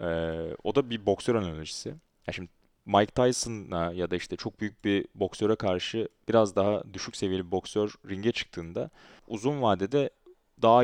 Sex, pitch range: male, 100-125 Hz